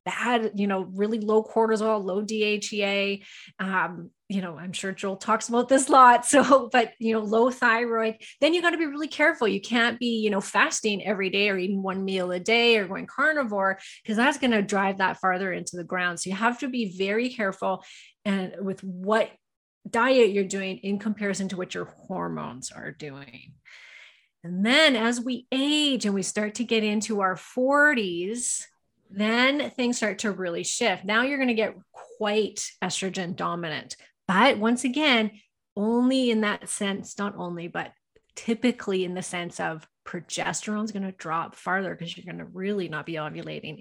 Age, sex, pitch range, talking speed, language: 30-49, female, 190-235 Hz, 185 wpm, English